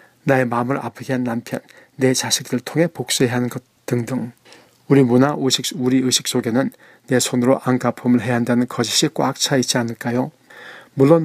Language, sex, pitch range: Korean, male, 125-140 Hz